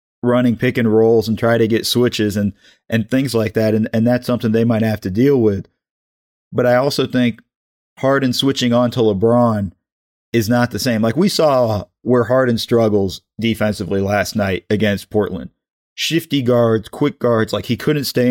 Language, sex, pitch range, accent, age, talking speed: English, male, 105-120 Hz, American, 40-59, 185 wpm